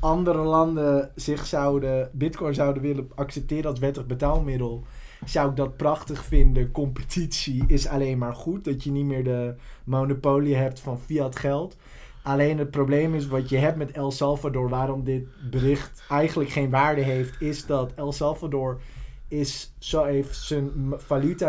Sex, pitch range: male, 130-150 Hz